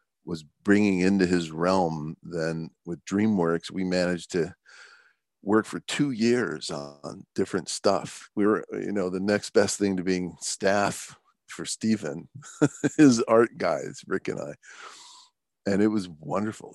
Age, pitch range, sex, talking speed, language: 40-59, 90-105 Hz, male, 145 wpm, English